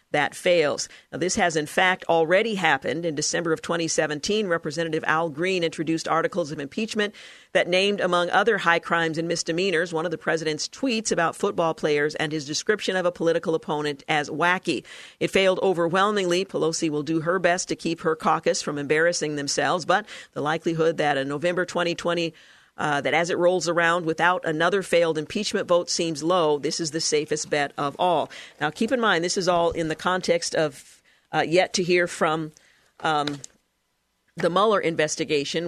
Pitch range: 155-185 Hz